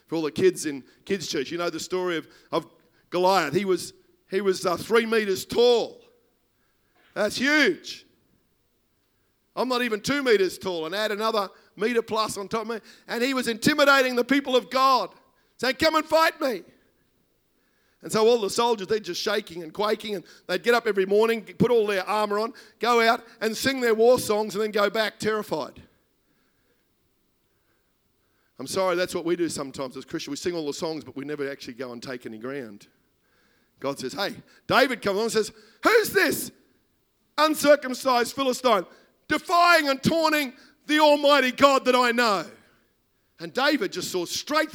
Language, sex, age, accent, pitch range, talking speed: English, male, 50-69, Australian, 185-265 Hz, 180 wpm